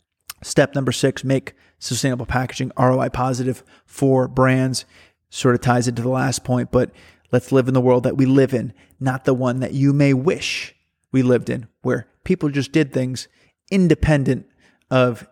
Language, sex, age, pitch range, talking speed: English, male, 30-49, 130-150 Hz, 170 wpm